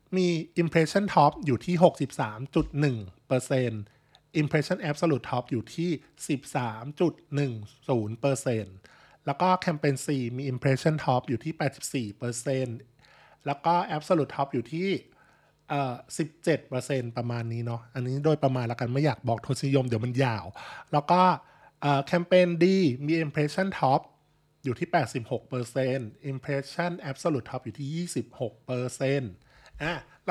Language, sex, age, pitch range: Thai, male, 20-39, 125-165 Hz